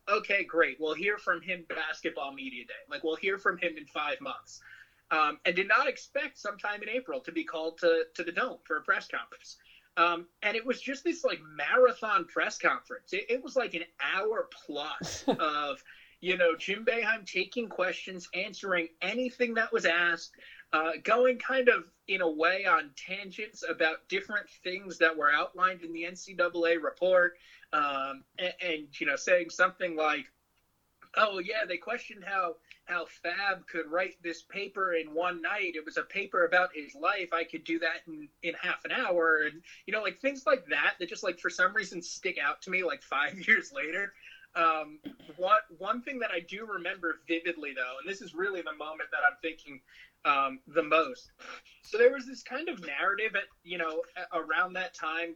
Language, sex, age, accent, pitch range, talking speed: English, male, 30-49, American, 165-205 Hz, 190 wpm